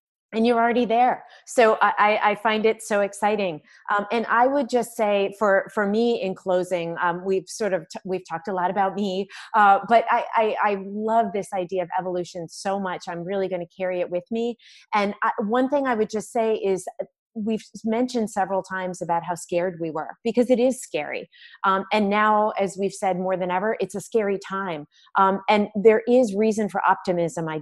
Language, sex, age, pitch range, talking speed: English, female, 30-49, 185-225 Hz, 205 wpm